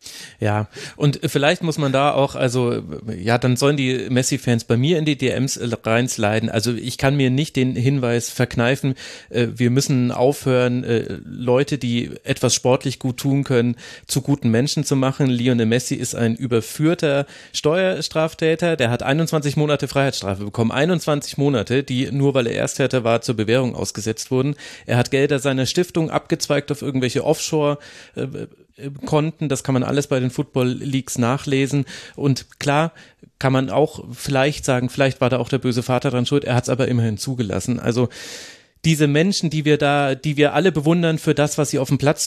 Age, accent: 30-49, German